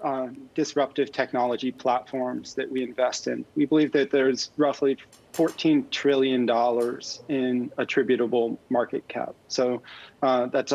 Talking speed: 130 wpm